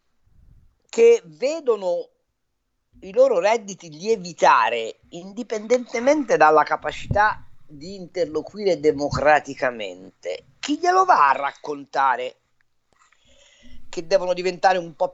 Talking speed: 85 wpm